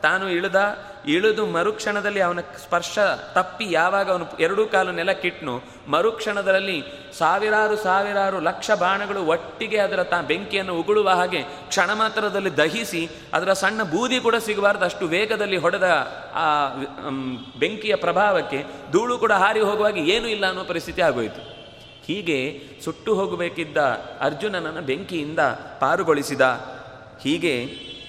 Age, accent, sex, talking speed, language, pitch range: 30-49, native, male, 110 wpm, Kannada, 150-200 Hz